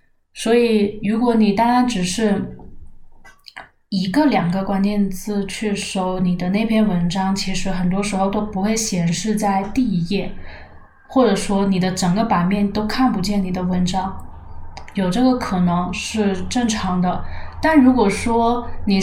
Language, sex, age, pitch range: Chinese, female, 20-39, 180-215 Hz